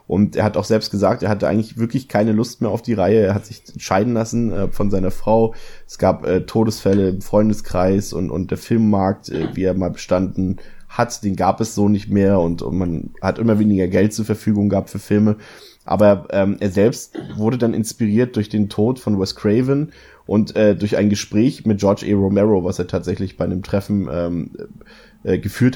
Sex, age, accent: male, 20-39, German